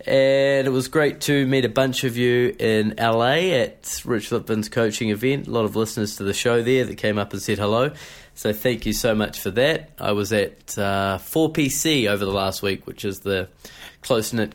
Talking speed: 210 wpm